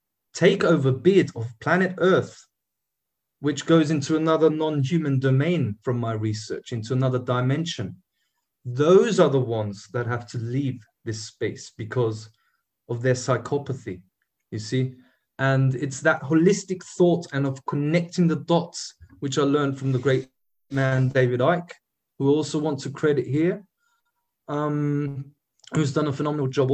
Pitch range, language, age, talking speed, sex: 130-160 Hz, English, 20-39, 145 wpm, male